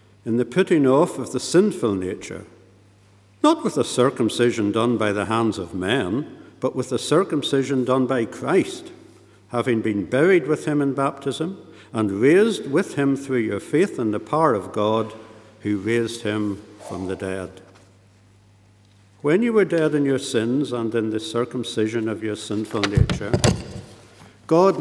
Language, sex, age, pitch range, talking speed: English, male, 60-79, 100-135 Hz, 160 wpm